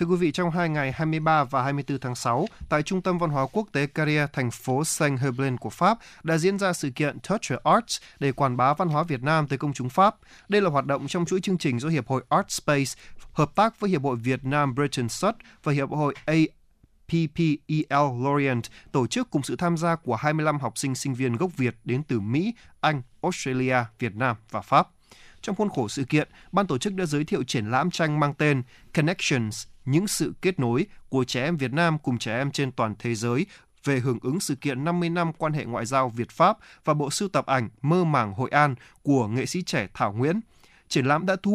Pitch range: 130-170 Hz